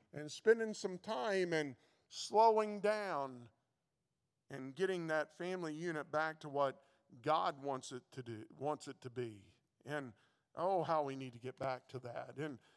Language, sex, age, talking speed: English, male, 50-69, 165 wpm